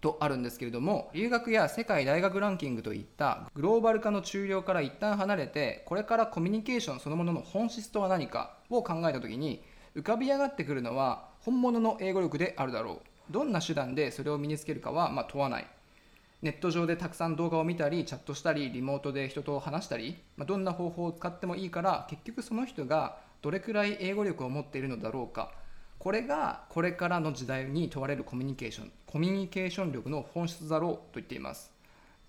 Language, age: Japanese, 20-39